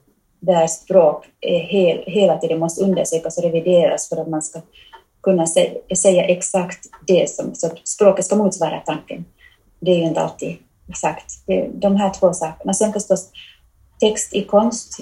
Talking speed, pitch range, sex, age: 170 wpm, 165-200 Hz, female, 30-49